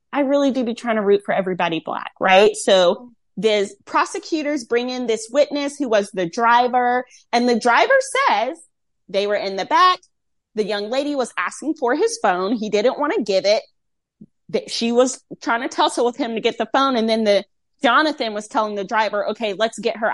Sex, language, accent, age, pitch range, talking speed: female, English, American, 20-39, 225-320 Hz, 205 wpm